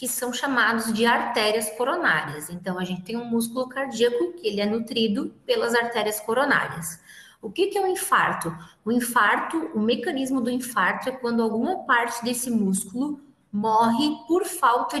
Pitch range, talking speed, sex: 195-255 Hz, 160 wpm, female